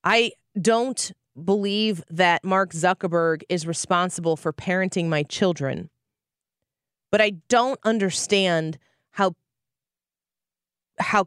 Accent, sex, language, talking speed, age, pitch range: American, female, English, 95 wpm, 20-39, 145-190 Hz